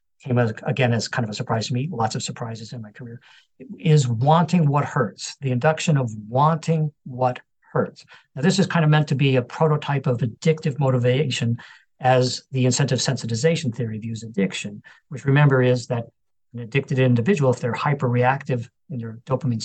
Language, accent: English, American